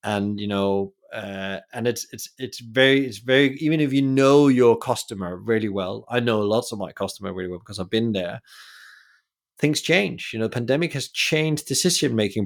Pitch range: 100-120 Hz